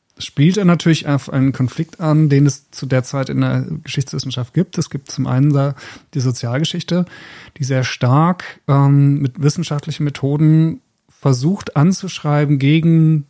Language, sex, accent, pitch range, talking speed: German, male, German, 125-150 Hz, 140 wpm